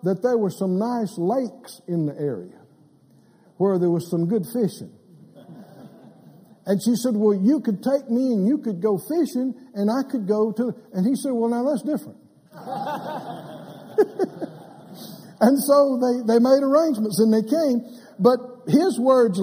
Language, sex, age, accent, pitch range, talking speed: English, male, 60-79, American, 200-260 Hz, 160 wpm